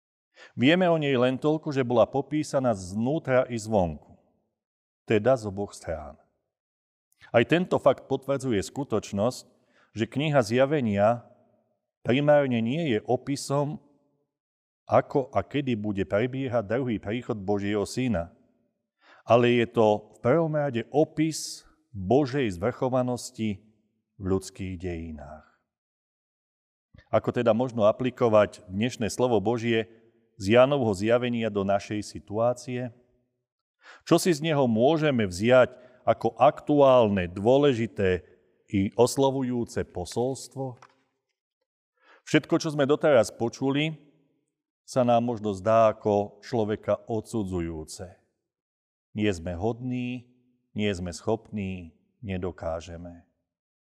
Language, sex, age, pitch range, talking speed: Slovak, male, 40-59, 105-135 Hz, 100 wpm